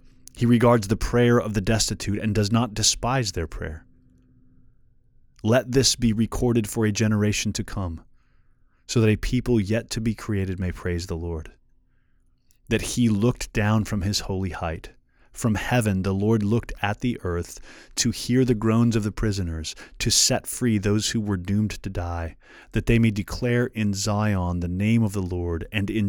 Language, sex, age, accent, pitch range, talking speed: English, male, 30-49, American, 95-115 Hz, 180 wpm